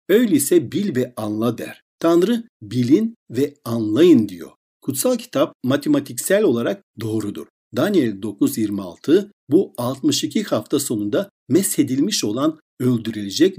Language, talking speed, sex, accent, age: Turkish, 105 wpm, male, native, 60-79